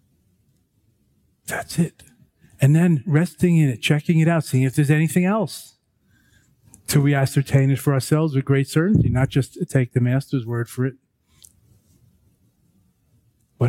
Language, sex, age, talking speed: English, male, 40-59, 145 wpm